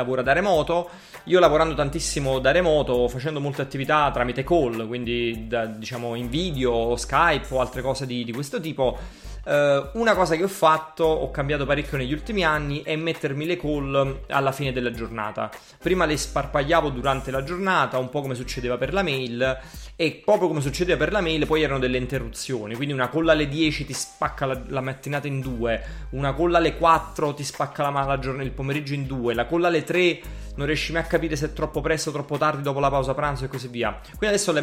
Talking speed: 205 wpm